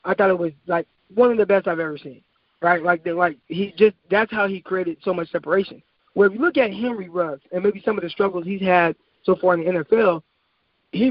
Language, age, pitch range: English, 20-39, 175-205 Hz